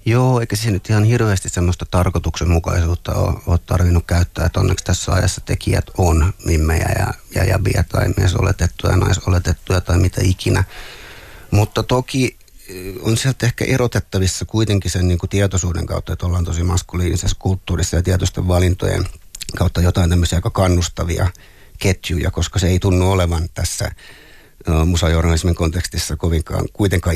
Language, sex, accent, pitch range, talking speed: Finnish, male, native, 90-100 Hz, 140 wpm